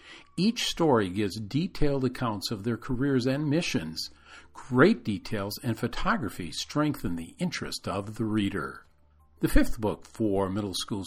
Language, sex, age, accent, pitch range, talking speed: English, male, 50-69, American, 105-155 Hz, 140 wpm